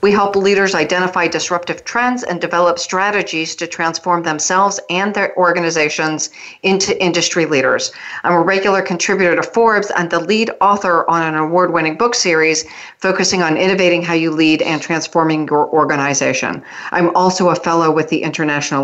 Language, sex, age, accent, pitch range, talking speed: English, female, 40-59, American, 165-195 Hz, 160 wpm